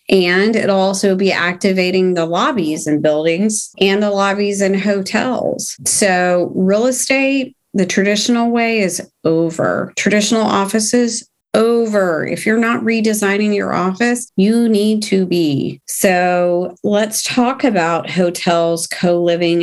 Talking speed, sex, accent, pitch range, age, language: 125 wpm, female, American, 170-220 Hz, 30-49, English